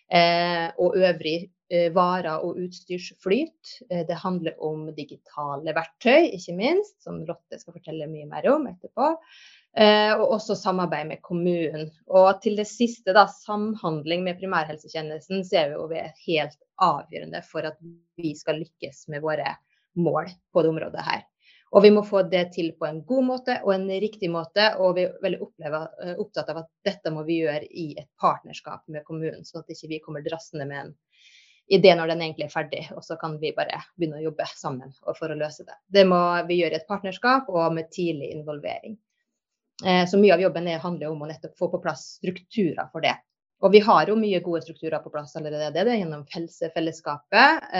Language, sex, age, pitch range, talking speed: English, female, 30-49, 160-195 Hz, 195 wpm